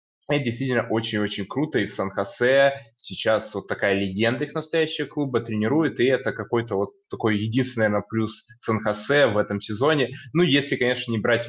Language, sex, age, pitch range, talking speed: Russian, male, 20-39, 100-130 Hz, 160 wpm